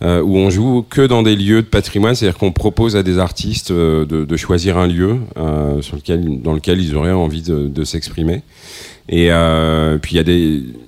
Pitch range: 85-105 Hz